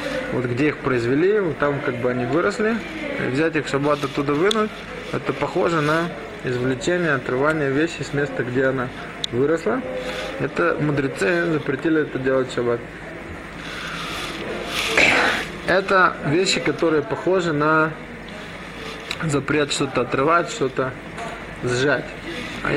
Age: 20-39